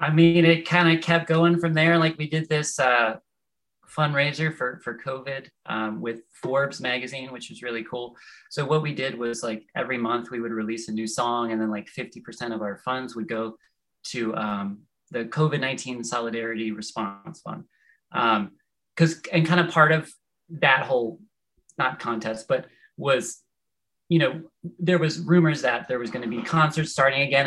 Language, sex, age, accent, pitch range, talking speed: English, male, 30-49, American, 115-155 Hz, 185 wpm